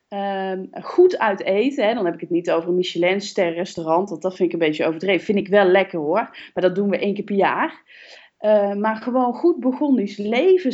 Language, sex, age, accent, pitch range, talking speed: Dutch, female, 20-39, Dutch, 200-305 Hz, 235 wpm